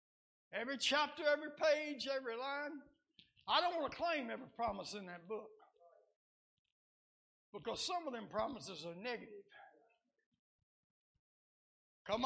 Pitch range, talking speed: 245-325 Hz, 115 wpm